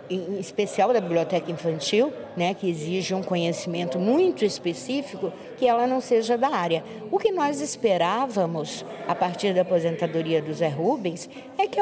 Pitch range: 175-250 Hz